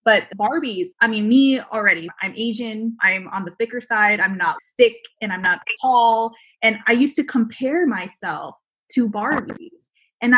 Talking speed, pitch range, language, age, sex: 170 wpm, 210-270 Hz, English, 20-39, female